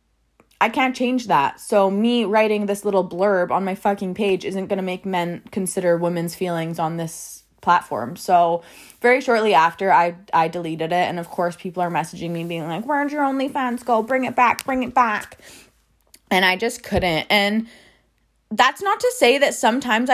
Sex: female